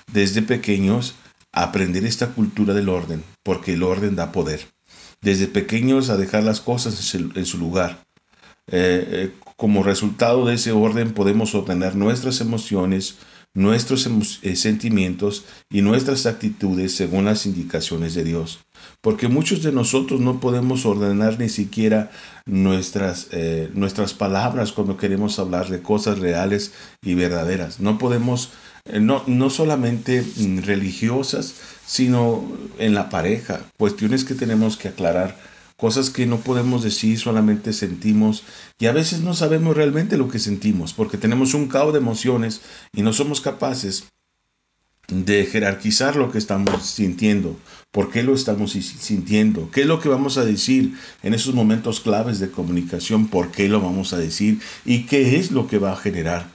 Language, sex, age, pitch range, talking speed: Spanish, male, 50-69, 95-120 Hz, 155 wpm